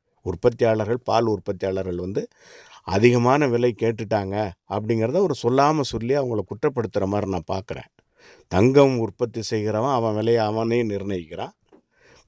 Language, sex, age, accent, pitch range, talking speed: English, male, 50-69, Indian, 105-135 Hz, 105 wpm